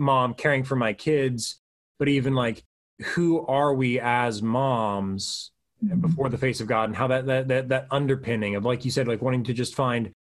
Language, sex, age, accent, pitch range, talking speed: English, male, 20-39, American, 110-135 Hz, 200 wpm